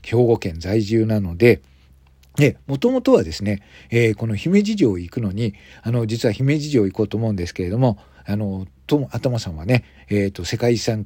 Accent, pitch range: native, 100-130 Hz